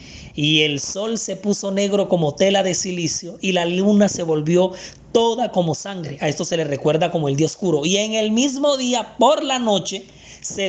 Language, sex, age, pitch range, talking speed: Spanish, male, 30-49, 165-205 Hz, 200 wpm